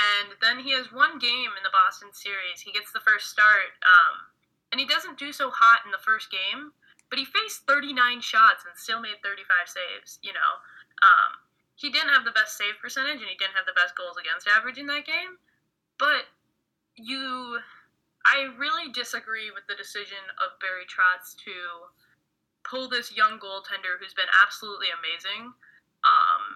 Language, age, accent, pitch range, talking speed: English, 20-39, American, 190-265 Hz, 180 wpm